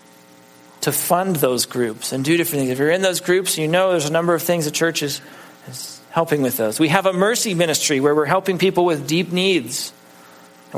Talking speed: 225 wpm